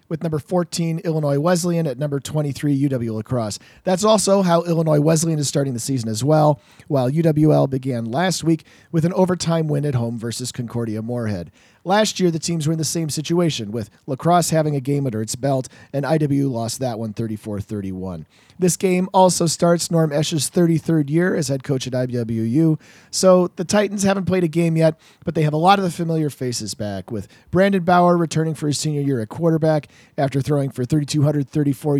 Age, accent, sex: 40-59, American, male